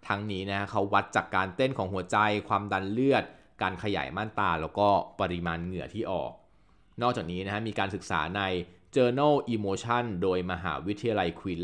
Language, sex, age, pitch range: Thai, male, 20-39, 95-125 Hz